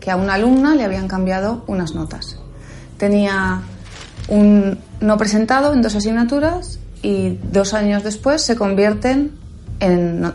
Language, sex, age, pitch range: Spanish, female, 30-49, 170-210 Hz